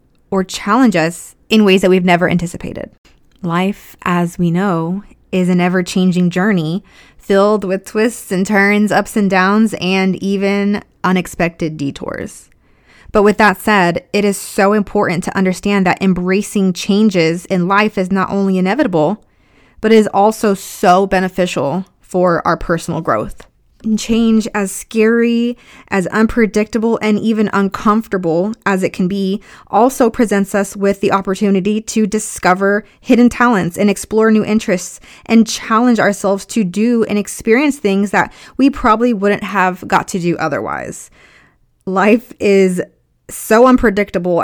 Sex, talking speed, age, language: female, 140 wpm, 20-39, English